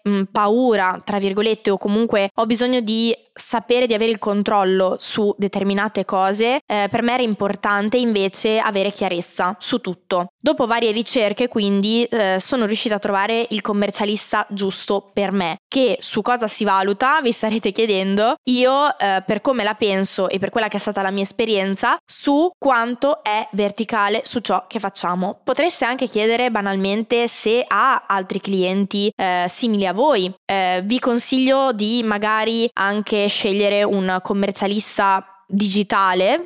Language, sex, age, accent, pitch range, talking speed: Italian, female, 20-39, native, 195-225 Hz, 155 wpm